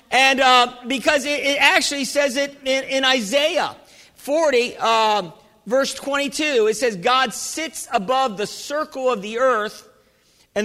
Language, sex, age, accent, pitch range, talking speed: English, male, 50-69, American, 220-265 Hz, 150 wpm